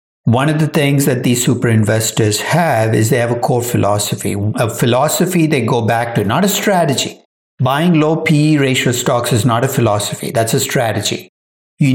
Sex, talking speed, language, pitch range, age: male, 185 wpm, English, 115-150 Hz, 60-79